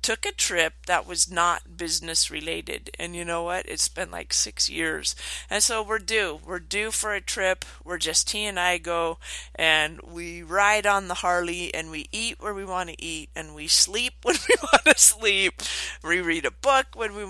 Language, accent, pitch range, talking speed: English, American, 160-195 Hz, 210 wpm